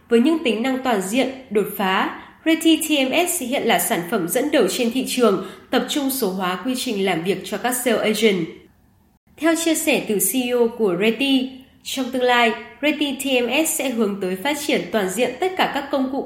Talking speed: 205 wpm